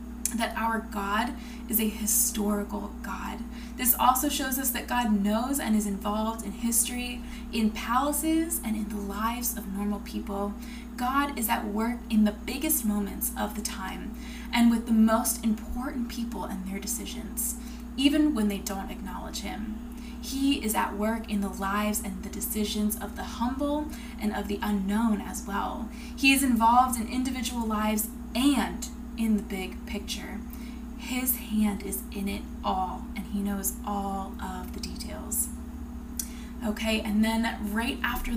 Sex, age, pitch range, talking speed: female, 20-39, 215-240 Hz, 160 wpm